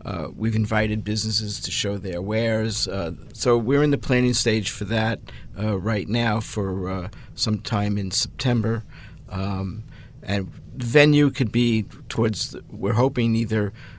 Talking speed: 160 wpm